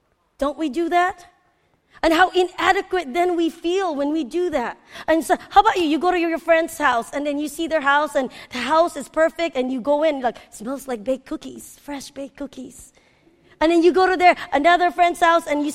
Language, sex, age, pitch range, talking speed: English, female, 20-39, 255-335 Hz, 225 wpm